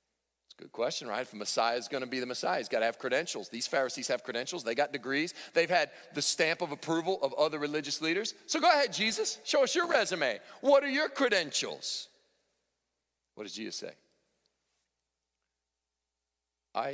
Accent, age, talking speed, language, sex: American, 40-59, 175 wpm, English, male